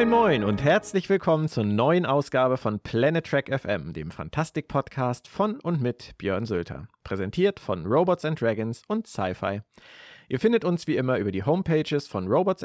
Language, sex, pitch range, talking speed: German, male, 115-165 Hz, 175 wpm